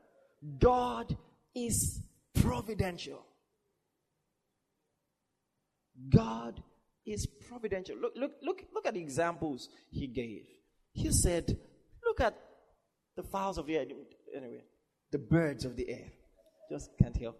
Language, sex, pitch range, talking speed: English, male, 170-280 Hz, 115 wpm